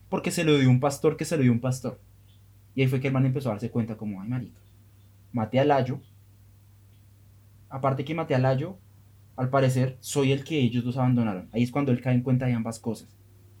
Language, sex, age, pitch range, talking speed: Spanish, male, 20-39, 105-160 Hz, 225 wpm